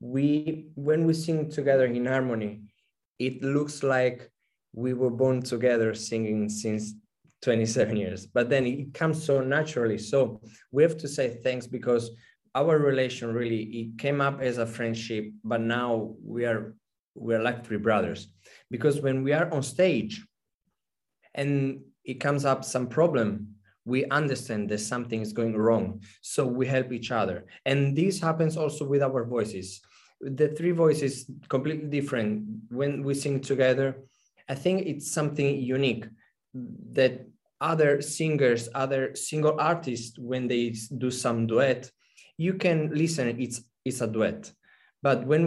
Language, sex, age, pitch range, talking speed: English, male, 20-39, 115-145 Hz, 150 wpm